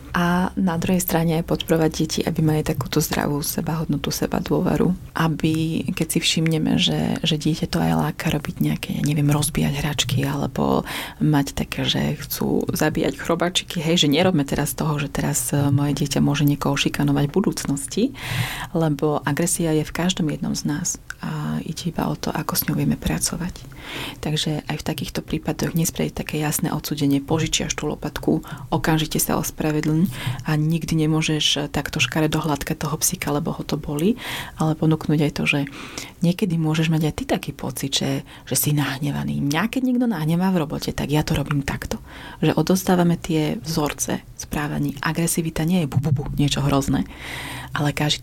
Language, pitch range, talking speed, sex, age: Slovak, 145-165 Hz, 170 wpm, female, 30-49